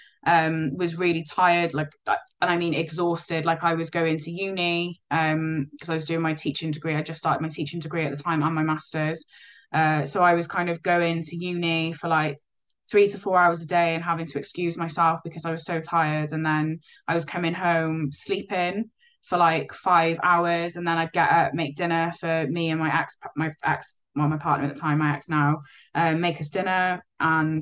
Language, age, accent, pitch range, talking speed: English, 20-39, British, 155-170 Hz, 220 wpm